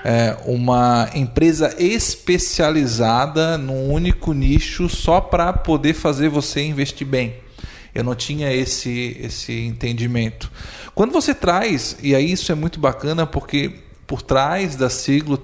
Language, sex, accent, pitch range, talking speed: Portuguese, male, Brazilian, 125-165 Hz, 130 wpm